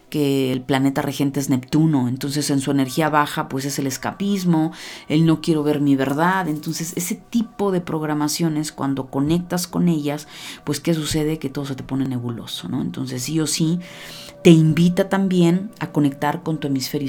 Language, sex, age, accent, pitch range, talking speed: Spanish, female, 40-59, Mexican, 135-160 Hz, 185 wpm